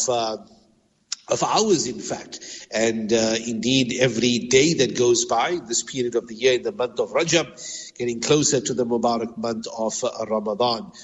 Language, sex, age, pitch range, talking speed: English, male, 60-79, 120-155 Hz, 175 wpm